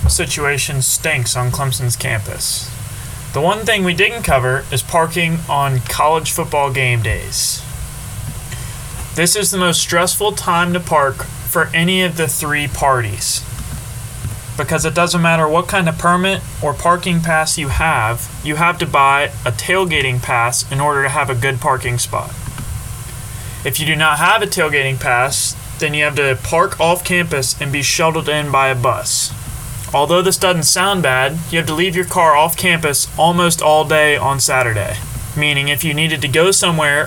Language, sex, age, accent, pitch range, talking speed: English, male, 20-39, American, 125-165 Hz, 175 wpm